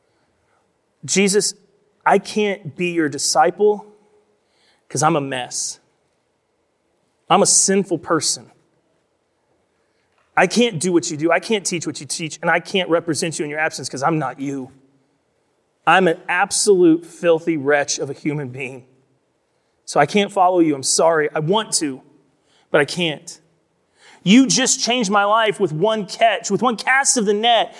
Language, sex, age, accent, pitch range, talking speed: English, male, 30-49, American, 155-240 Hz, 160 wpm